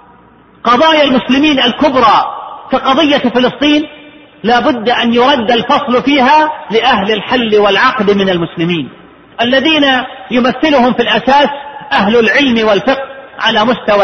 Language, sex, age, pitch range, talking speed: Arabic, male, 40-59, 230-285 Hz, 110 wpm